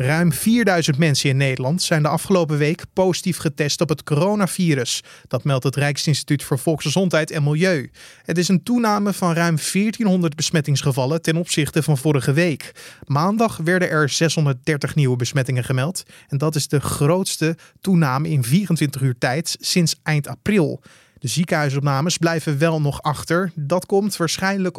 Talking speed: 155 wpm